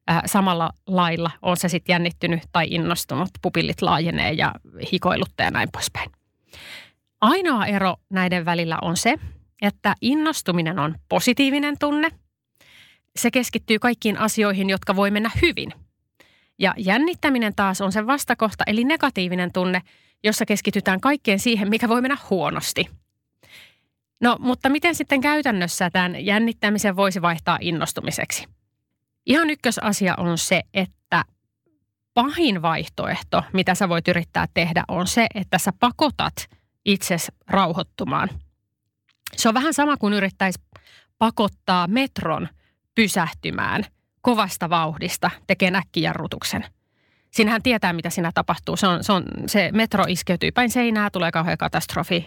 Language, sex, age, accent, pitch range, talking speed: Finnish, female, 30-49, native, 175-230 Hz, 125 wpm